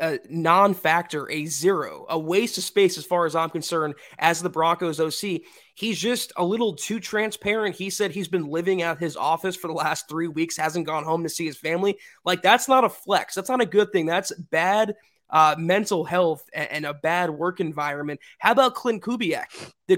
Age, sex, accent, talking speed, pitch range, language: 20-39, male, American, 205 wpm, 165-205 Hz, English